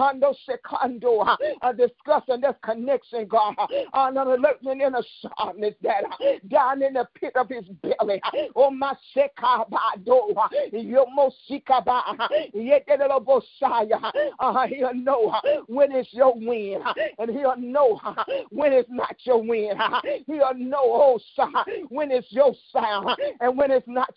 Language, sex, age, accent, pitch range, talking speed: English, male, 50-69, American, 235-280 Hz, 140 wpm